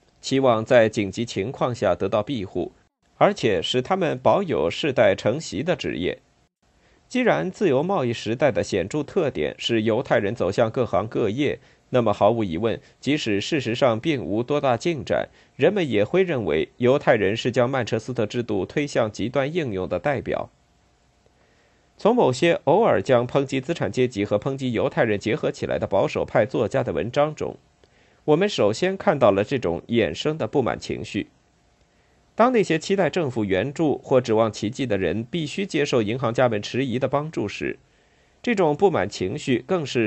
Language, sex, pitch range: Chinese, male, 115-165 Hz